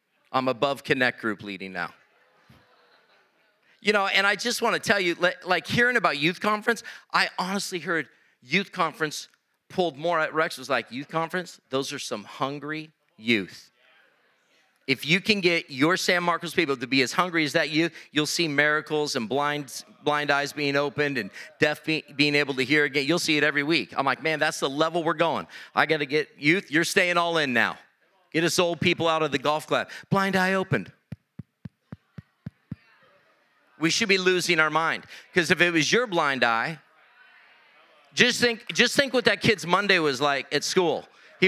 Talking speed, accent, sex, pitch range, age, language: 190 wpm, American, male, 145-195 Hz, 40-59, English